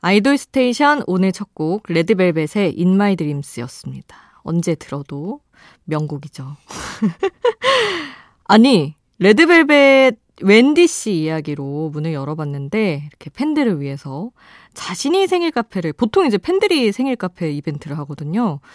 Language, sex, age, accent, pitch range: Korean, female, 20-39, native, 155-230 Hz